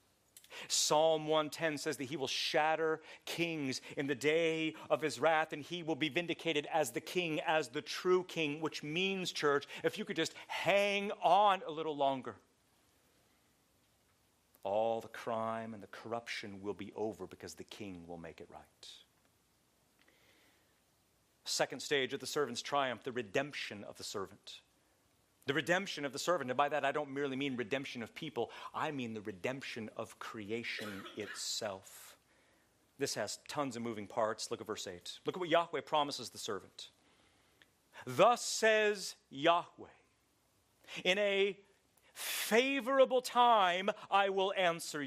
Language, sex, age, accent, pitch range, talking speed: English, male, 40-59, American, 135-195 Hz, 150 wpm